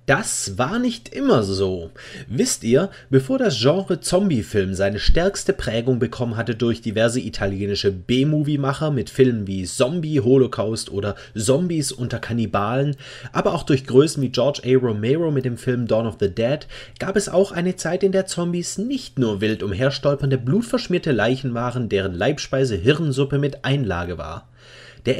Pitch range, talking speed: 115-160 Hz, 150 wpm